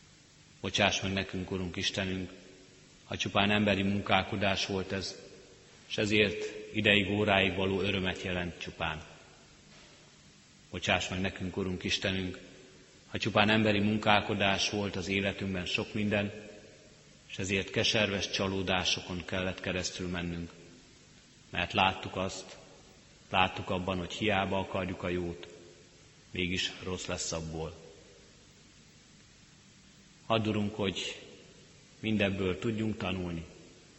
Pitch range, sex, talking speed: 90-105 Hz, male, 105 wpm